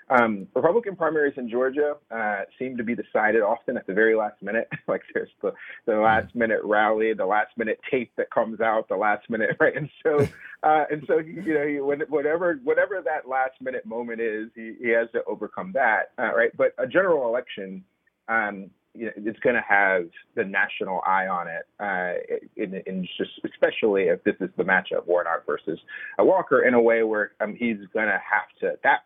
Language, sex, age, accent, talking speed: English, male, 30-49, American, 200 wpm